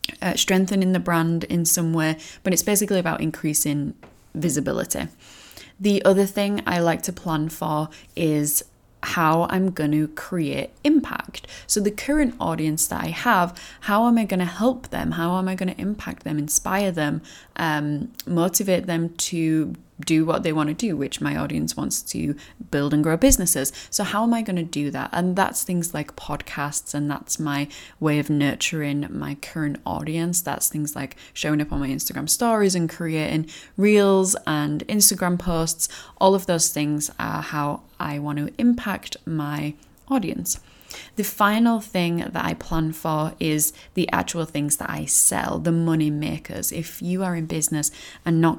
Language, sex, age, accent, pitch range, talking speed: English, female, 10-29, British, 150-190 Hz, 175 wpm